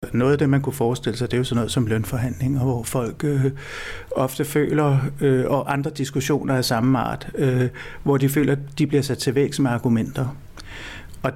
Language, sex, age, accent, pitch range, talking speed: Danish, male, 60-79, native, 115-140 Hz, 200 wpm